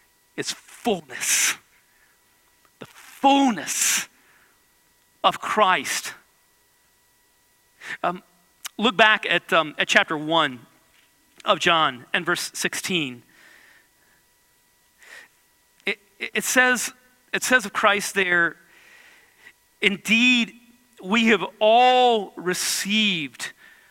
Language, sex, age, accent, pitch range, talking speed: English, male, 40-59, American, 170-250 Hz, 85 wpm